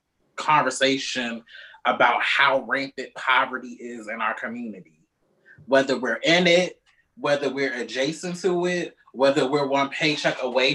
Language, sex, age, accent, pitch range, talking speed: English, male, 20-39, American, 150-190 Hz, 130 wpm